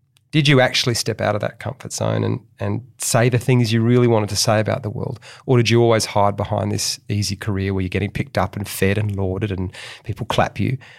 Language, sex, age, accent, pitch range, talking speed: English, male, 30-49, Australian, 105-125 Hz, 240 wpm